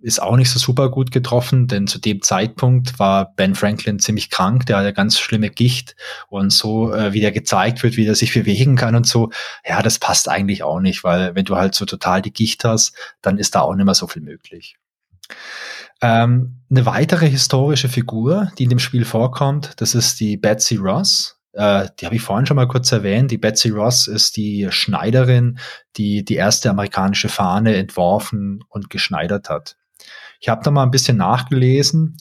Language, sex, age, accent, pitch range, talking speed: German, male, 20-39, German, 105-125 Hz, 195 wpm